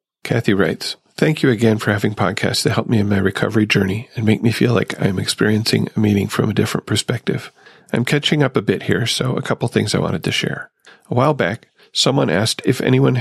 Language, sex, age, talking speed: English, male, 40-59, 225 wpm